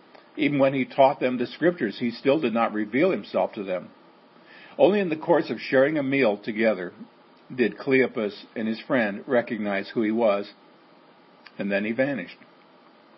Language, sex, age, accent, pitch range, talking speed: English, male, 50-69, American, 115-185 Hz, 170 wpm